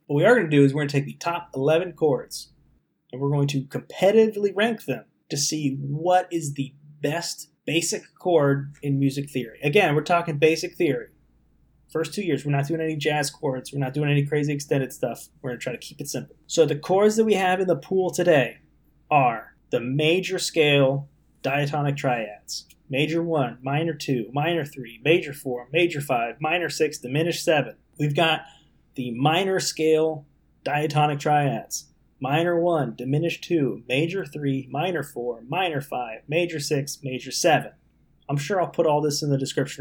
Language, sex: English, male